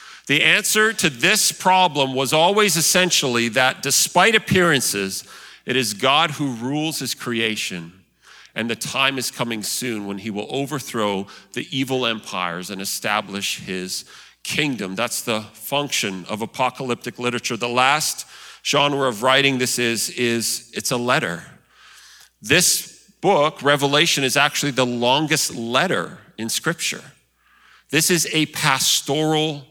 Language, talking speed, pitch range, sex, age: English, 135 wpm, 120-160 Hz, male, 40-59